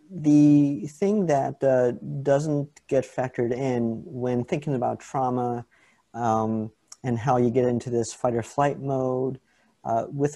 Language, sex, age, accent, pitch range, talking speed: English, male, 40-59, American, 120-140 Hz, 145 wpm